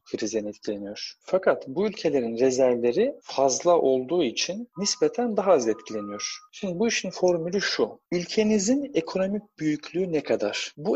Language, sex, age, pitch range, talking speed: Turkish, male, 40-59, 120-180 Hz, 120 wpm